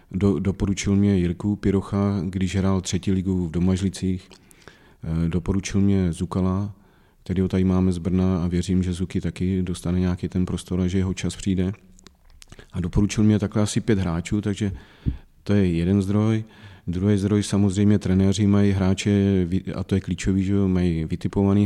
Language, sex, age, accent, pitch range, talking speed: Czech, male, 40-59, native, 90-95 Hz, 165 wpm